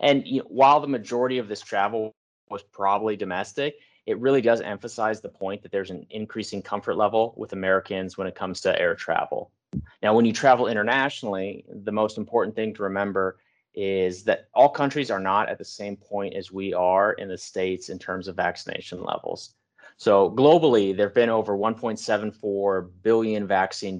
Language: English